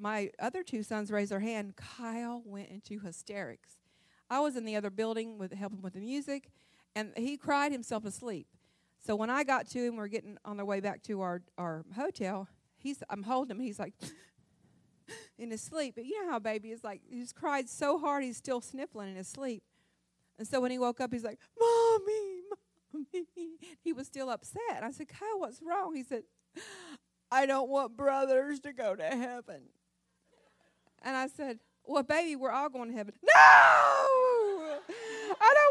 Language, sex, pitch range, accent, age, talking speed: English, female, 205-290 Hz, American, 40-59, 185 wpm